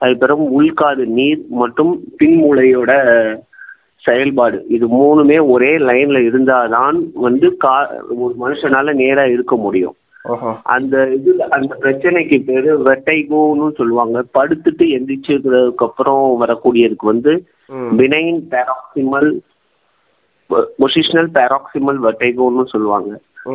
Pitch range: 125-165 Hz